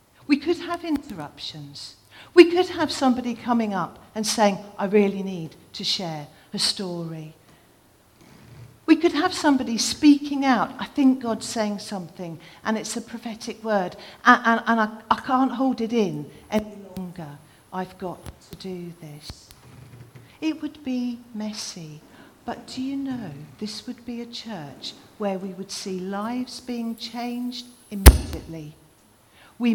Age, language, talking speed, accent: 50-69, English, 145 wpm, British